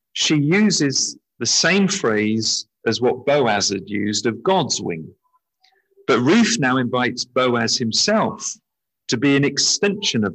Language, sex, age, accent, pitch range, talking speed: English, male, 50-69, British, 115-165 Hz, 140 wpm